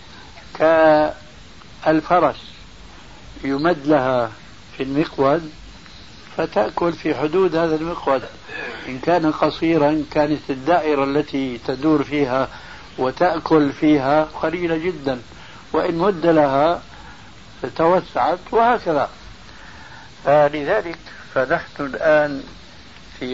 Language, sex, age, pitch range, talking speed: Arabic, male, 70-89, 135-165 Hz, 80 wpm